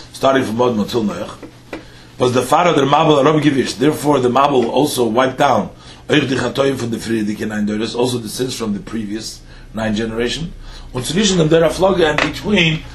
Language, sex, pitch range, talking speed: English, male, 110-160 Hz, 130 wpm